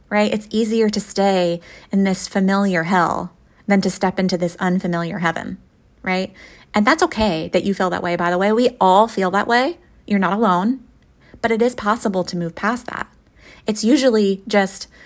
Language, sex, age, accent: English, female, 20-39, American